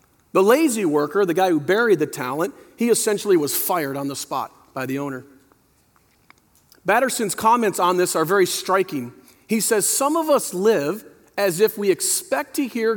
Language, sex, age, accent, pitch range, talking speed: English, male, 40-59, American, 145-235 Hz, 175 wpm